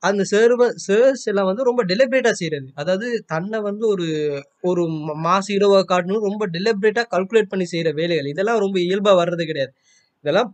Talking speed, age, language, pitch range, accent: 160 wpm, 20-39, Tamil, 190-245 Hz, native